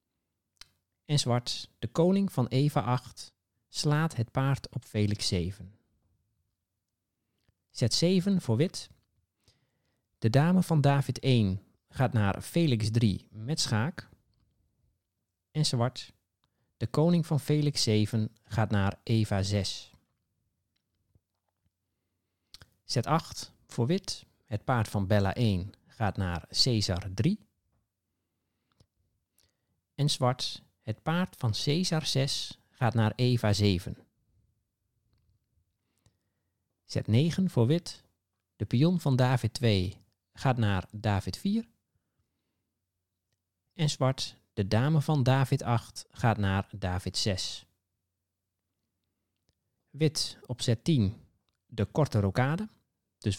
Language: Dutch